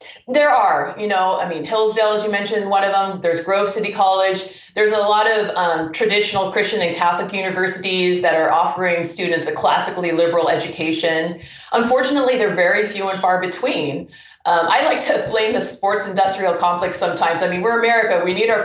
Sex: female